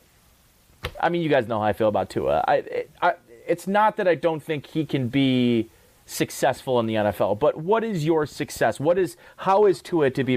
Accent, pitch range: American, 120-170 Hz